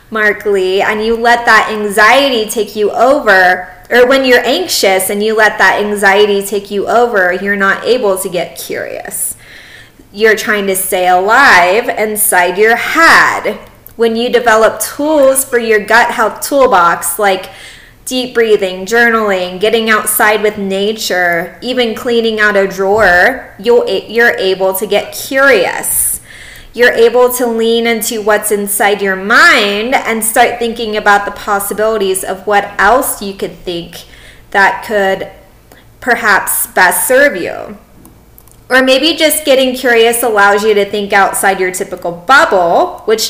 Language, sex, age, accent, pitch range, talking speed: English, female, 20-39, American, 195-240 Hz, 145 wpm